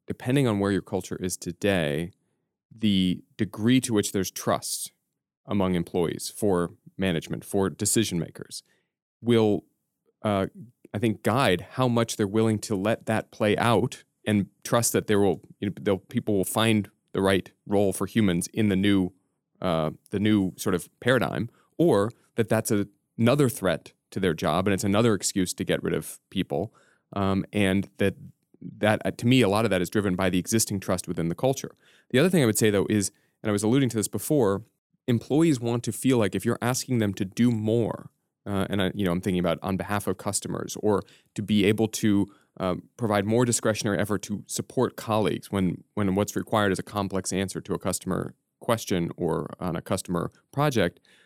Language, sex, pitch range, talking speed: English, male, 95-115 Hz, 195 wpm